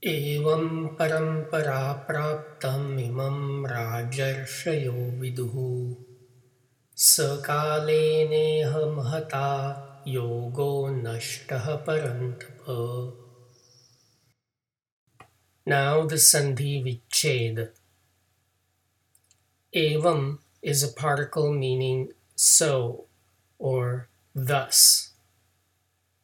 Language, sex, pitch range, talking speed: English, male, 125-145 Hz, 50 wpm